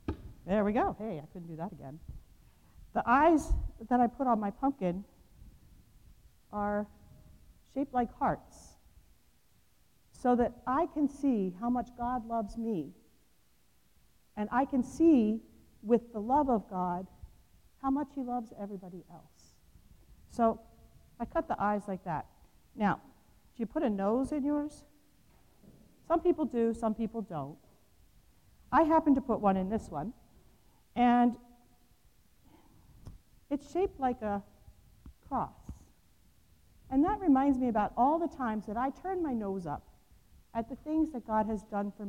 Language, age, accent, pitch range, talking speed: English, 50-69, American, 200-270 Hz, 145 wpm